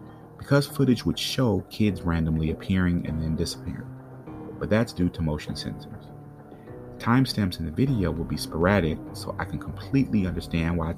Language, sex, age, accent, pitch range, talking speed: English, male, 30-49, American, 80-110 Hz, 160 wpm